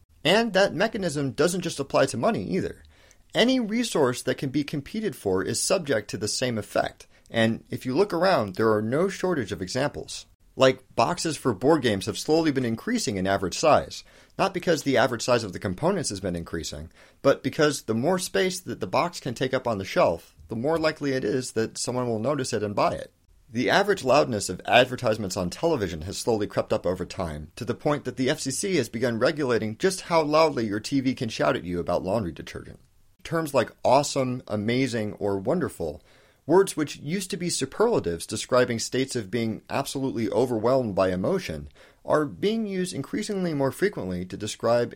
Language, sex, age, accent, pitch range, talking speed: English, male, 40-59, American, 105-155 Hz, 195 wpm